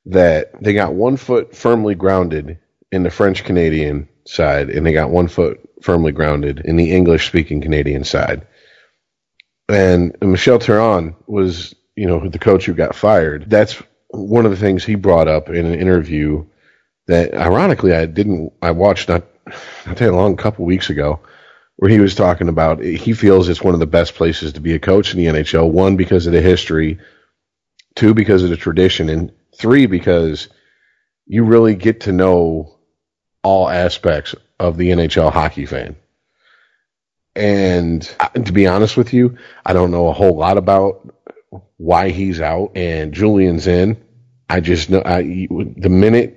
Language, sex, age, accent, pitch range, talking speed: English, male, 40-59, American, 85-100 Hz, 170 wpm